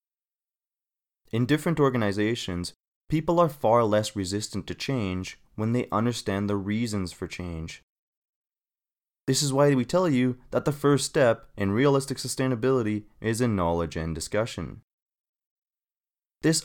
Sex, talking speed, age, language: male, 130 wpm, 20-39, English